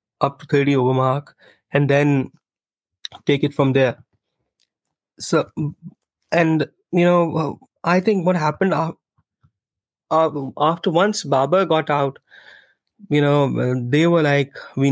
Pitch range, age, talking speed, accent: 135-165 Hz, 20-39, 130 wpm, Indian